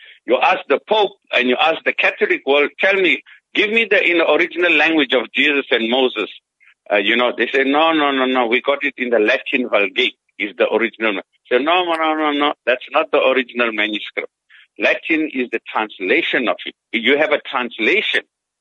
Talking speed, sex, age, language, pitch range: 210 wpm, male, 60-79, English, 130-200 Hz